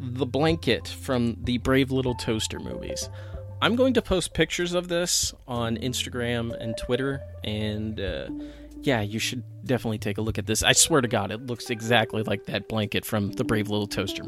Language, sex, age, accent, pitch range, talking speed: English, male, 30-49, American, 110-155 Hz, 190 wpm